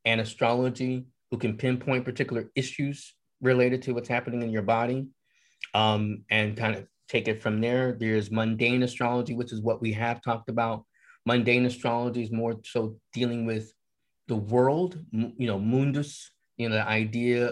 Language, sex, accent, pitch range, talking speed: English, male, American, 110-125 Hz, 165 wpm